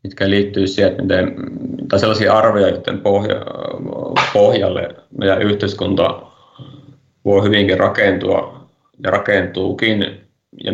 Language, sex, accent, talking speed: Finnish, male, native, 105 wpm